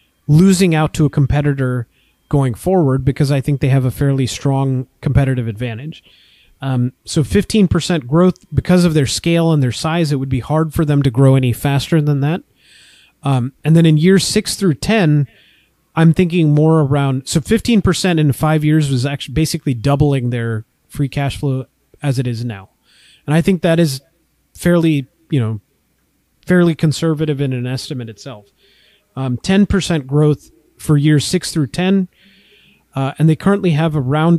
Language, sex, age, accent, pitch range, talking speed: English, male, 30-49, American, 130-165 Hz, 170 wpm